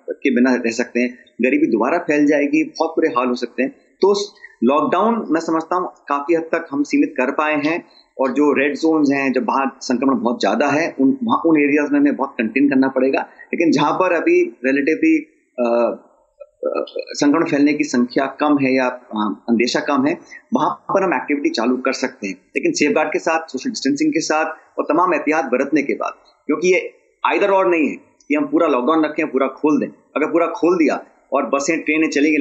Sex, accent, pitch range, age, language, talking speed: male, native, 125-200 Hz, 30-49, Hindi, 200 wpm